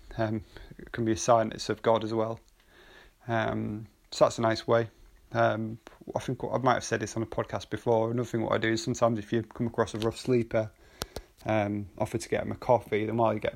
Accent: British